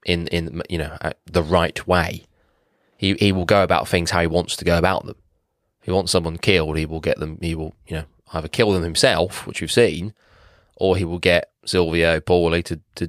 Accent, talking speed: British, 220 wpm